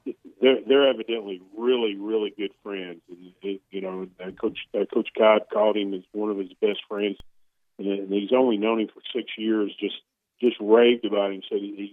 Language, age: English, 40-59